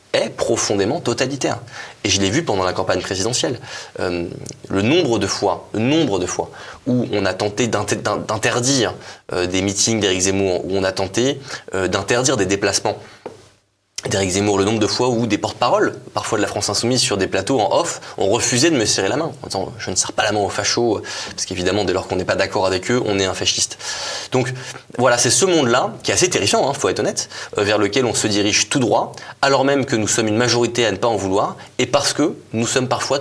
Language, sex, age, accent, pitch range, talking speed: French, male, 20-39, French, 100-125 Hz, 235 wpm